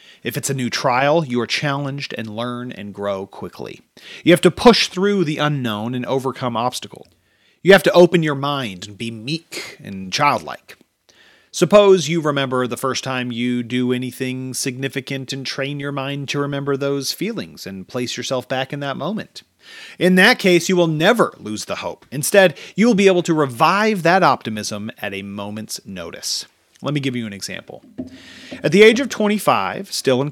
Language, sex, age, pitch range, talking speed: English, male, 40-59, 110-155 Hz, 185 wpm